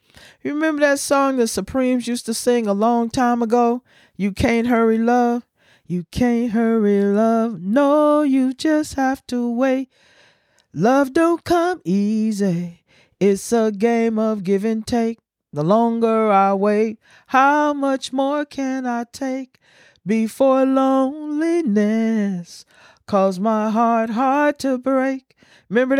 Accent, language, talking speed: American, English, 130 wpm